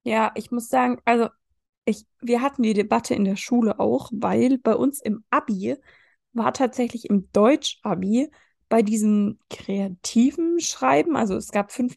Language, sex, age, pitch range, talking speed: German, female, 20-39, 205-250 Hz, 155 wpm